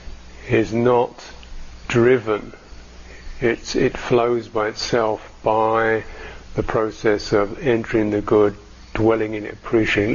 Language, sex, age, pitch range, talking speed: English, male, 50-69, 80-120 Hz, 120 wpm